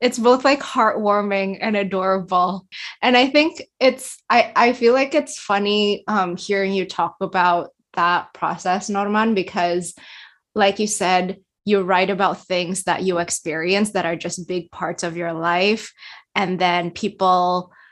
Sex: female